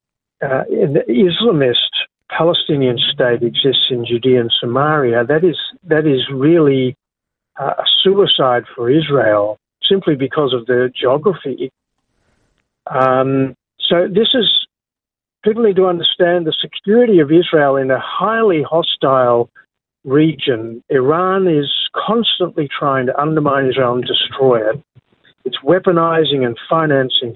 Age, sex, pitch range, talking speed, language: 50-69, male, 130-170 Hz, 120 wpm, English